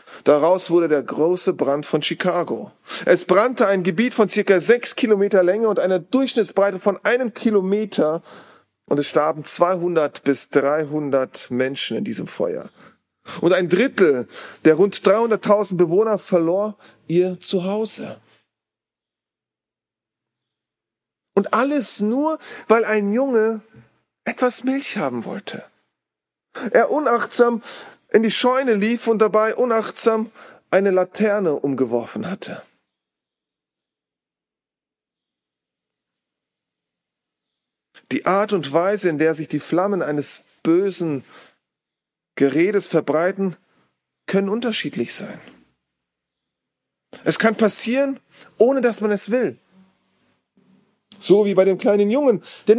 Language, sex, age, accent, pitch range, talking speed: German, male, 40-59, German, 160-220 Hz, 110 wpm